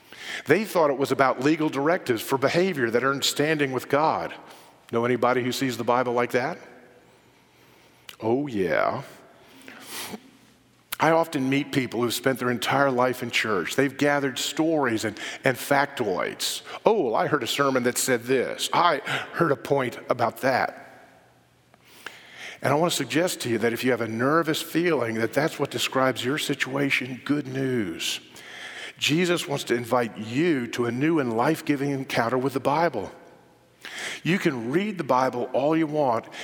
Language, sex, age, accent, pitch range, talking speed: English, male, 50-69, American, 120-145 Hz, 165 wpm